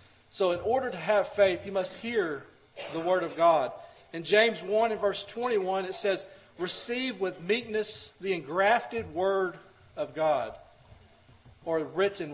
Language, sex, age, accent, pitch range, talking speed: English, male, 40-59, American, 145-195 Hz, 150 wpm